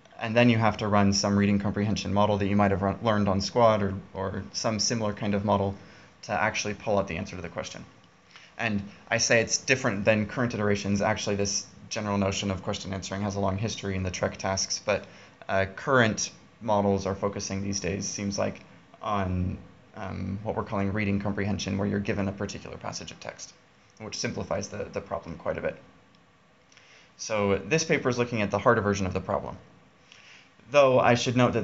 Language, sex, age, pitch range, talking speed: English, male, 20-39, 100-120 Hz, 205 wpm